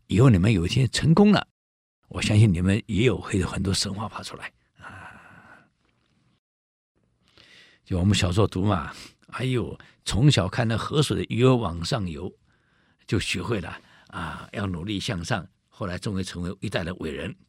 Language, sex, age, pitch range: Chinese, male, 60-79, 90-115 Hz